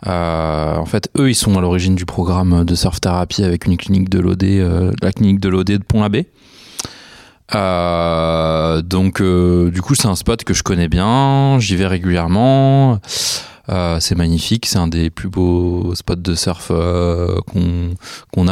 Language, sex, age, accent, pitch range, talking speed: French, male, 20-39, French, 90-115 Hz, 175 wpm